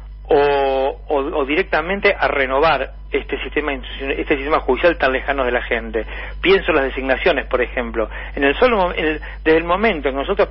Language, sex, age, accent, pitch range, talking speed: Spanish, male, 40-59, Argentinian, 140-195 Hz, 190 wpm